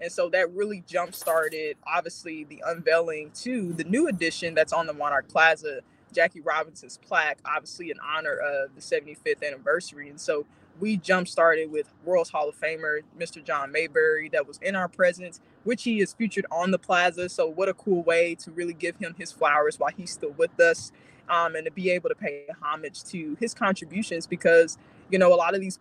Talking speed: 200 wpm